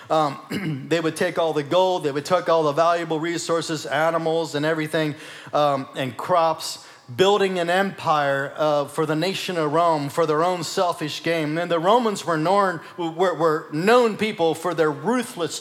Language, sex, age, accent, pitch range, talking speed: English, male, 40-59, American, 155-185 Hz, 170 wpm